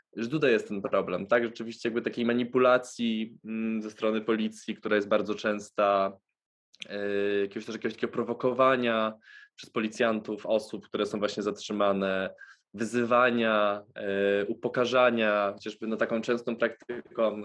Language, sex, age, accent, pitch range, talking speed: English, male, 20-39, Polish, 105-120 Hz, 140 wpm